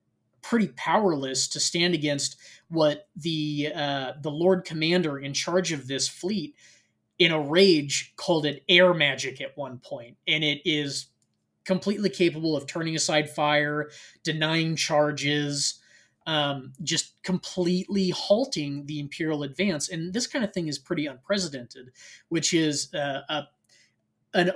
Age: 20-39